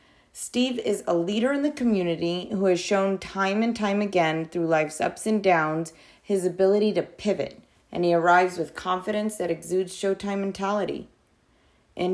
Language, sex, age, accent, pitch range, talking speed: English, female, 30-49, American, 180-215 Hz, 165 wpm